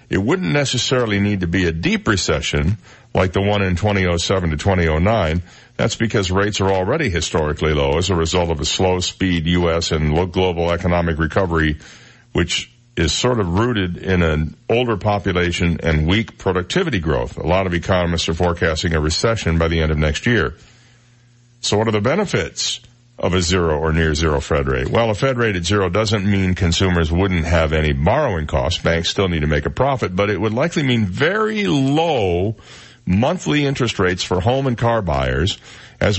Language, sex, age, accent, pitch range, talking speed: English, male, 60-79, American, 85-120 Hz, 185 wpm